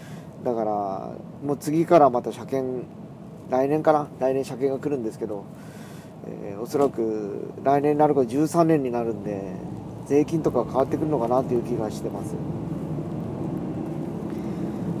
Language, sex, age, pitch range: Japanese, male, 40-59, 145-170 Hz